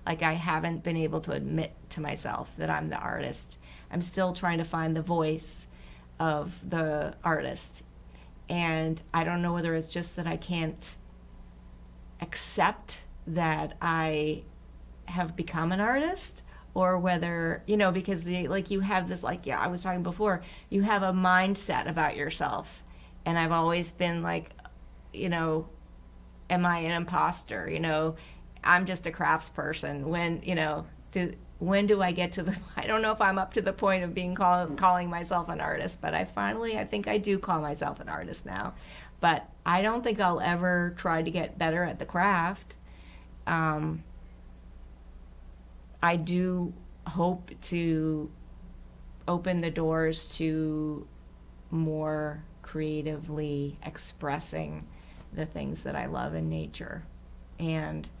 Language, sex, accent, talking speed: English, female, American, 155 wpm